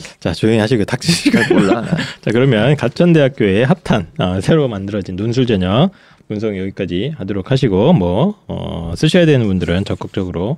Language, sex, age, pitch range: Korean, male, 20-39, 105-165 Hz